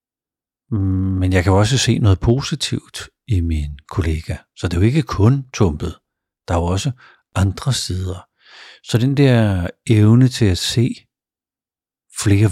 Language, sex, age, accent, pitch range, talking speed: Danish, male, 60-79, native, 95-120 Hz, 155 wpm